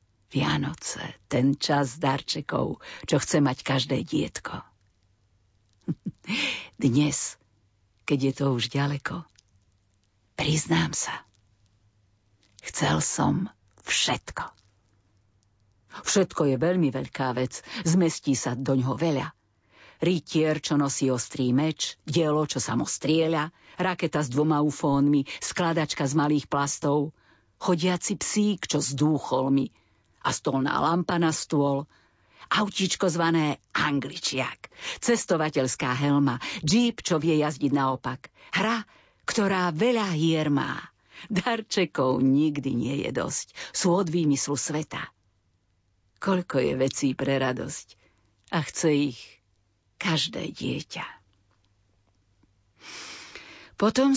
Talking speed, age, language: 100 wpm, 50-69, Slovak